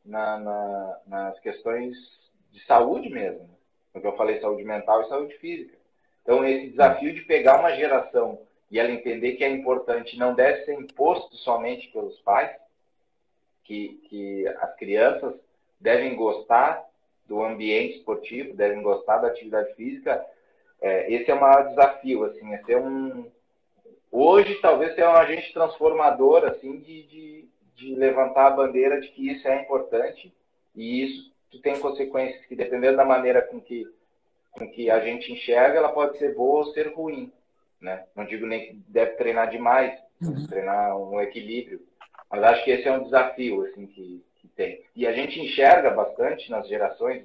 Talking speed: 150 wpm